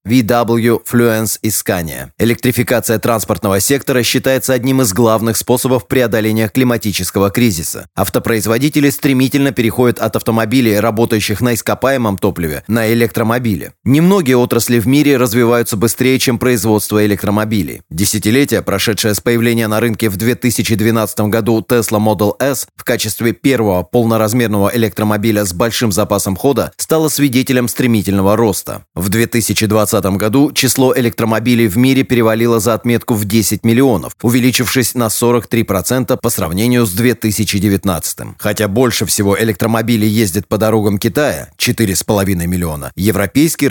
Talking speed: 125 wpm